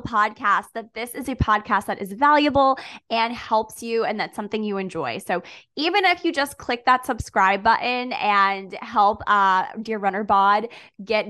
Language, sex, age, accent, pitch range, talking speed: English, female, 20-39, American, 200-250 Hz, 175 wpm